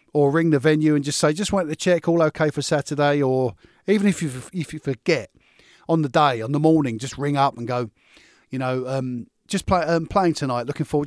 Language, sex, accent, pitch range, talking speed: English, male, British, 130-160 Hz, 235 wpm